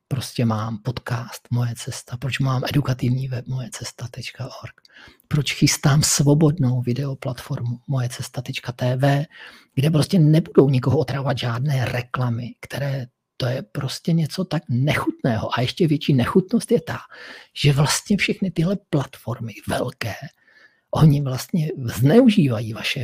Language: Czech